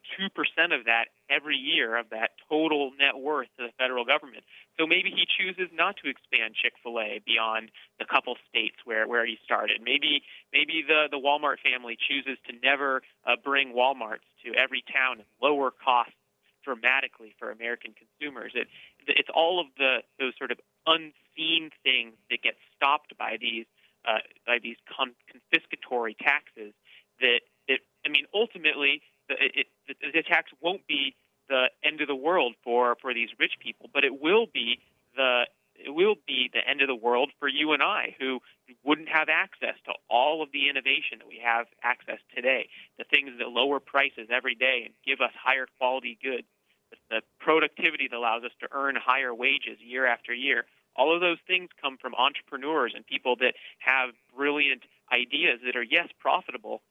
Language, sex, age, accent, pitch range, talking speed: English, male, 30-49, American, 120-155 Hz, 180 wpm